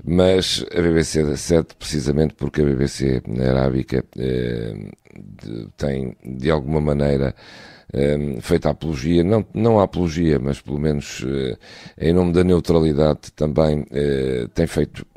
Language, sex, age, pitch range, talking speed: Portuguese, male, 50-69, 65-80 Hz, 140 wpm